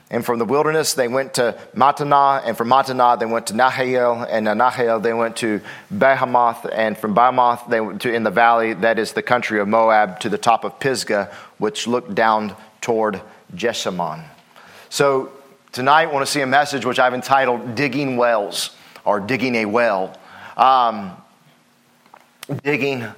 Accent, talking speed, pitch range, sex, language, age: American, 170 wpm, 115-140 Hz, male, English, 40-59